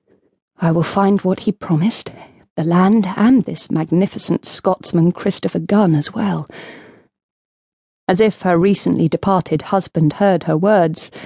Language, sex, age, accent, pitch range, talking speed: English, female, 30-49, British, 165-210 Hz, 135 wpm